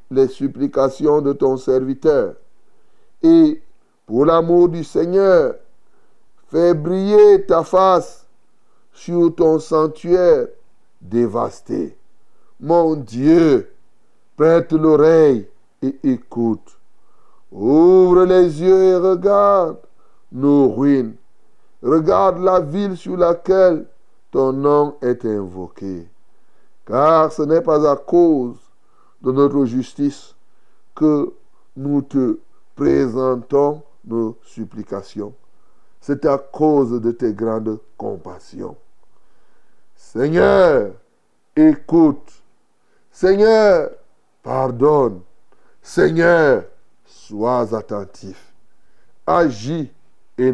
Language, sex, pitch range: French, male, 125-190 Hz